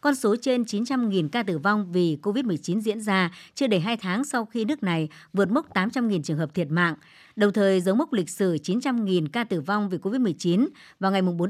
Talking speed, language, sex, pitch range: 215 wpm, Vietnamese, male, 180-235 Hz